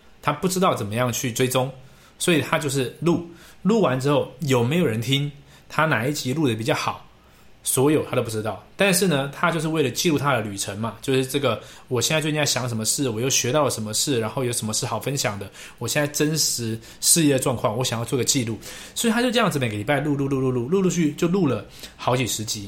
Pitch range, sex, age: 115-150 Hz, male, 20-39